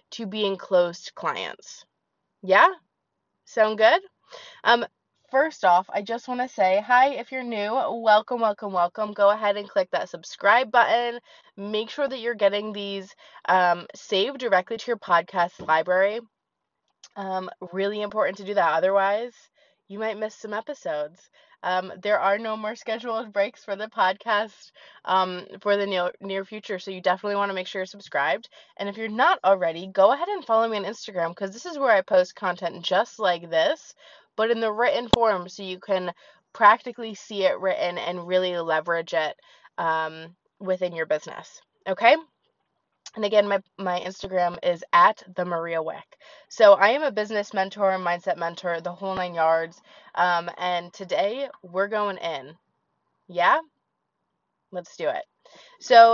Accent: American